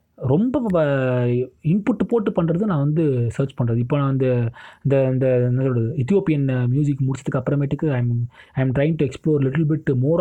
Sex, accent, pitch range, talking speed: male, native, 125-155 Hz, 140 wpm